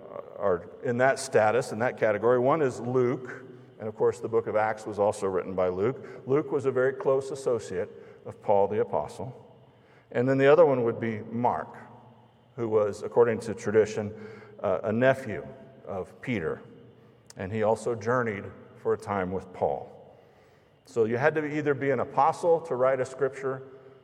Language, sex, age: English, male, 50-69